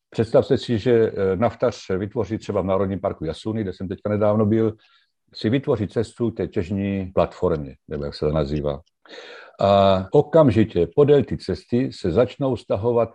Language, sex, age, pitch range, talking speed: Czech, male, 50-69, 95-115 Hz, 160 wpm